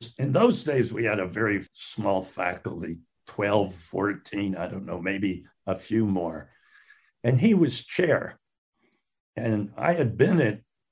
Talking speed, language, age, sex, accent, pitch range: 150 wpm, English, 60-79, male, American, 95-115 Hz